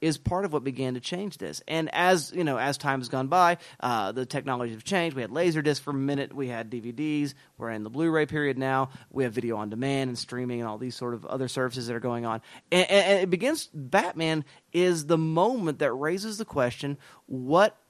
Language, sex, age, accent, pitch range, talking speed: English, male, 30-49, American, 130-175 Hz, 230 wpm